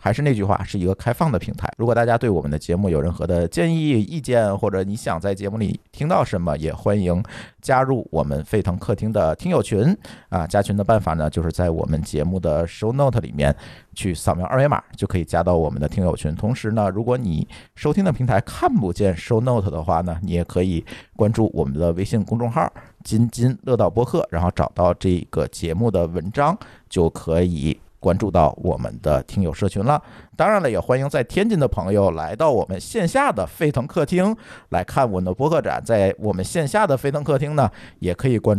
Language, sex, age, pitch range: Chinese, male, 50-69, 85-120 Hz